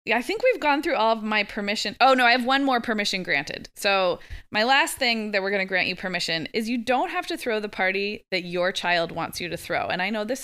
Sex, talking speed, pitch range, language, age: female, 270 wpm, 175-235 Hz, English, 20-39